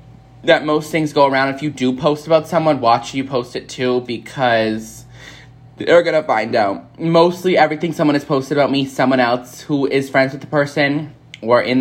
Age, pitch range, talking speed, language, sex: 20-39, 120-140 Hz, 195 wpm, English, male